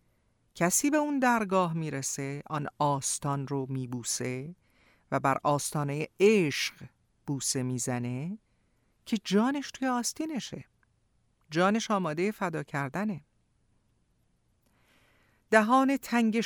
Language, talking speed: Persian, 90 wpm